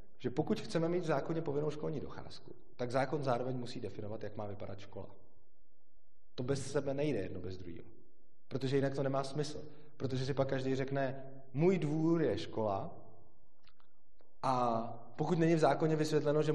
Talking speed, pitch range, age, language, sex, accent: 165 wpm, 105-135 Hz, 30-49, Czech, male, native